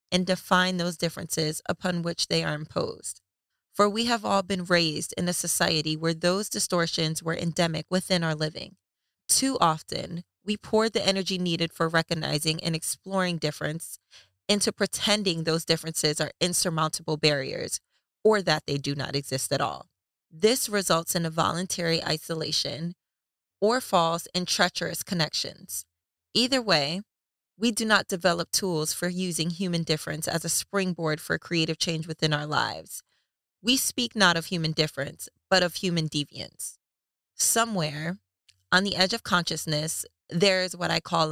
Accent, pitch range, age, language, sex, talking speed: American, 155-190 Hz, 20-39, English, female, 155 wpm